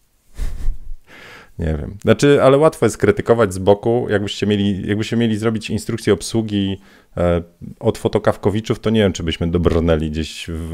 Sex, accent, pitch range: male, native, 85-105 Hz